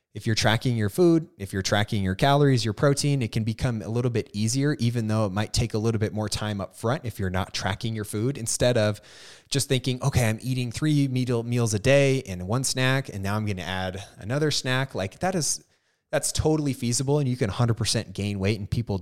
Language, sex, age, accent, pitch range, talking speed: English, male, 20-39, American, 95-125 Hz, 235 wpm